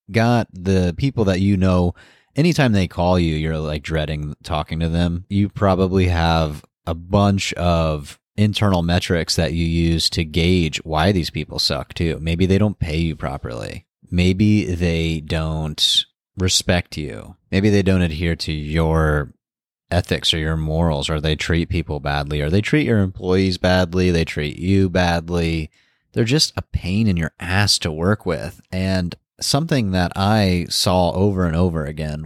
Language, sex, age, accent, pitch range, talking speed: English, male, 30-49, American, 80-105 Hz, 165 wpm